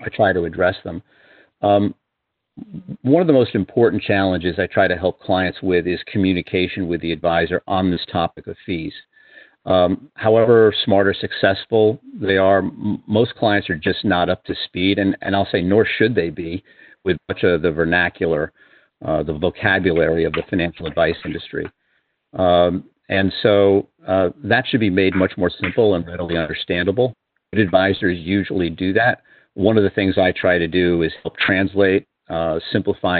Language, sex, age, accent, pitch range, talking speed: English, male, 50-69, American, 90-105 Hz, 175 wpm